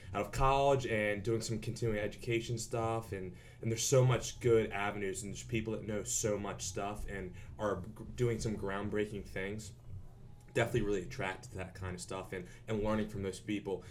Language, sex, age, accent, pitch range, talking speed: English, male, 20-39, American, 95-115 Hz, 190 wpm